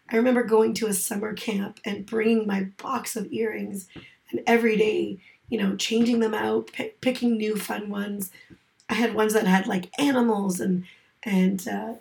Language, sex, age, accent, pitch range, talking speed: English, female, 30-49, American, 195-235 Hz, 175 wpm